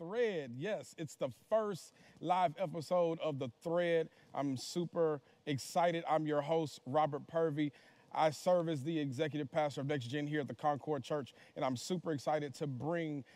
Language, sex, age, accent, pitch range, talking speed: English, male, 40-59, American, 145-175 Hz, 170 wpm